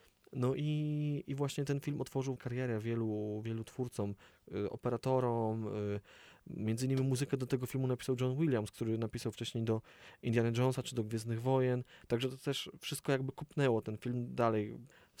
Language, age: Polish, 20-39